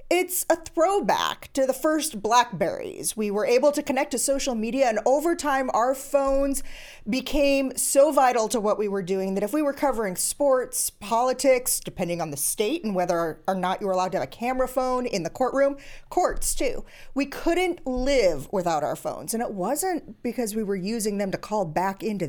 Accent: American